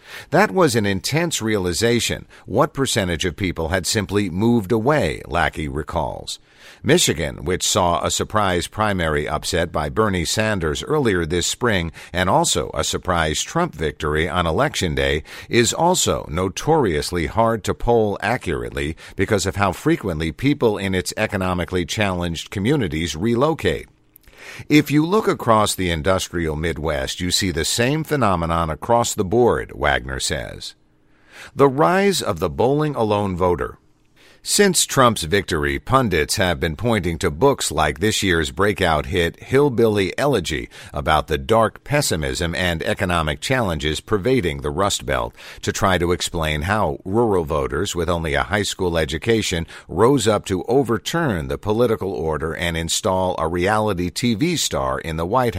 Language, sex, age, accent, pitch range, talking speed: English, male, 50-69, American, 85-115 Hz, 145 wpm